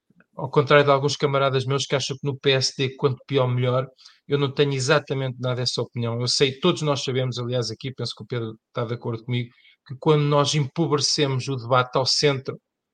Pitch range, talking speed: 130-155 Hz, 205 wpm